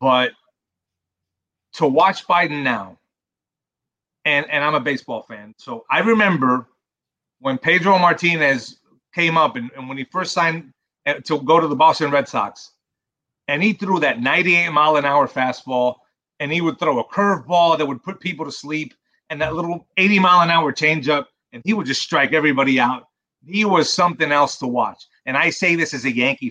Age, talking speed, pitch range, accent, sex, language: 30-49, 170 wpm, 130-175 Hz, American, male, English